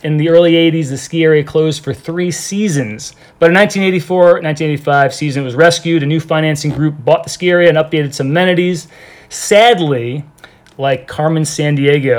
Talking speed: 165 wpm